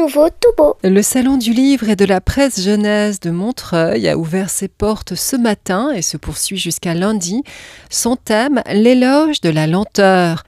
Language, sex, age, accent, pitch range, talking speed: French, female, 40-59, French, 185-240 Hz, 160 wpm